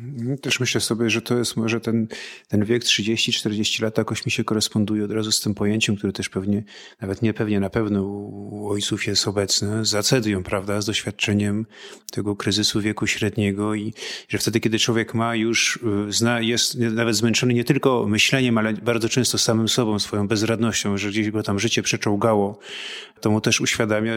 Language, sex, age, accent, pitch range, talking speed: Polish, male, 30-49, native, 105-115 Hz, 180 wpm